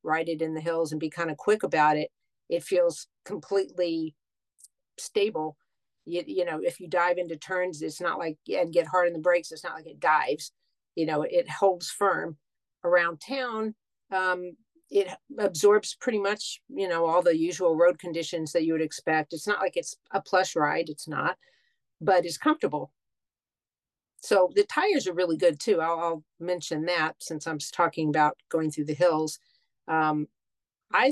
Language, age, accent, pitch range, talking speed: English, 50-69, American, 155-185 Hz, 180 wpm